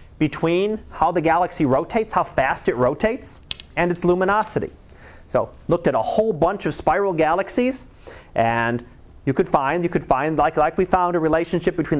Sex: male